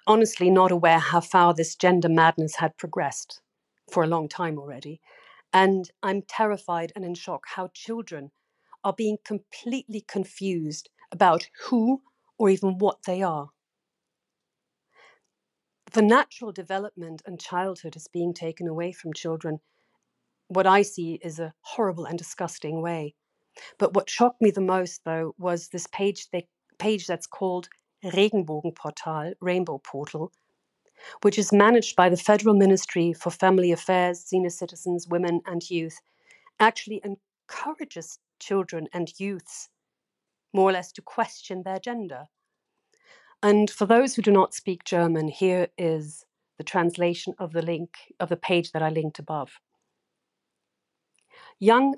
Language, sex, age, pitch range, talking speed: English, female, 40-59, 170-205 Hz, 140 wpm